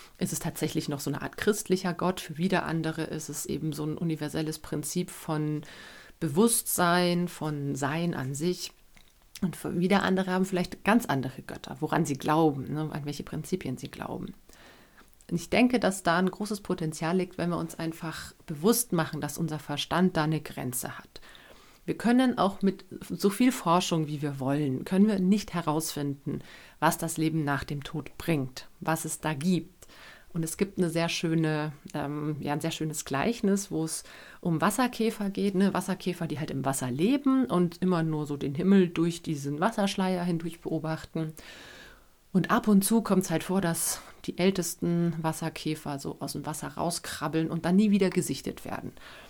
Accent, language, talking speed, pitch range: German, German, 180 wpm, 155-185 Hz